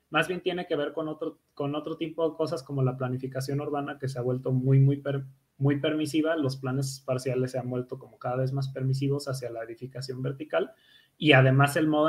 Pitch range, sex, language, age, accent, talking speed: 130-145 Hz, male, Spanish, 20-39, Mexican, 220 wpm